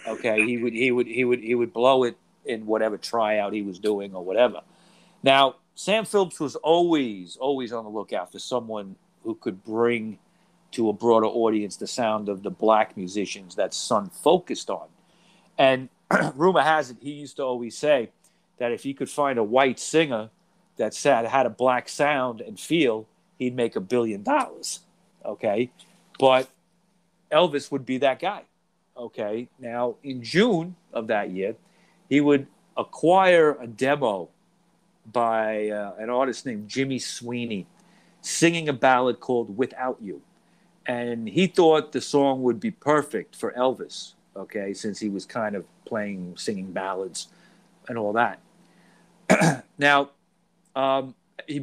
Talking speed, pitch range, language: 155 wpm, 110-145 Hz, English